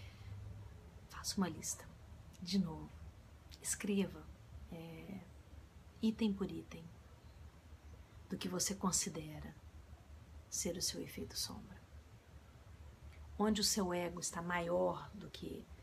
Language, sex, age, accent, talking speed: Portuguese, female, 40-59, Brazilian, 95 wpm